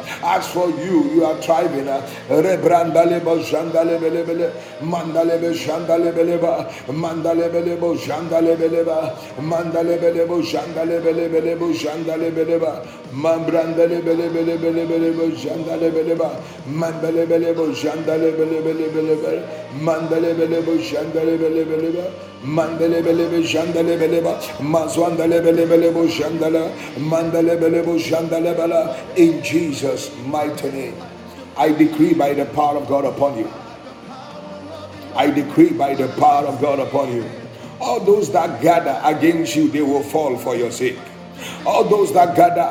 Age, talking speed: 60-79, 90 wpm